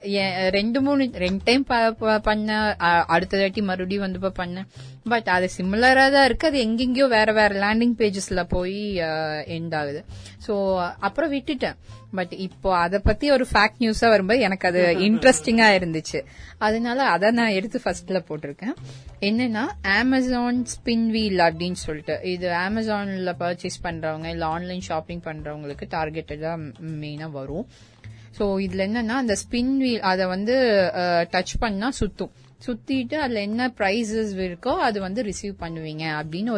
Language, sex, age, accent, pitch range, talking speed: Tamil, female, 20-39, native, 165-220 Hz, 135 wpm